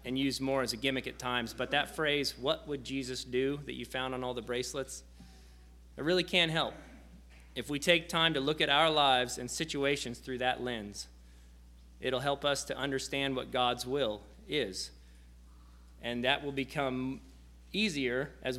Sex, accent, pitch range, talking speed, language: male, American, 105-140 Hz, 180 wpm, English